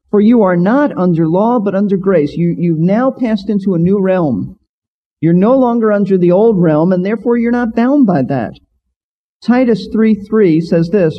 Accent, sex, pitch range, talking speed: American, male, 155-220 Hz, 195 wpm